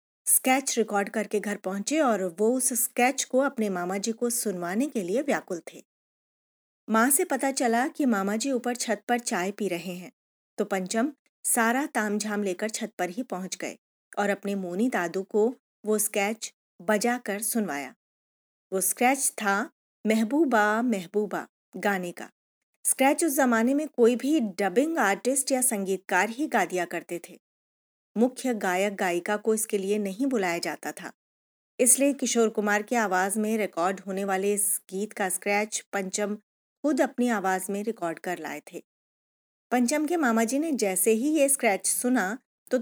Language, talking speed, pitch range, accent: Hindi, 165 wpm, 200-250 Hz, native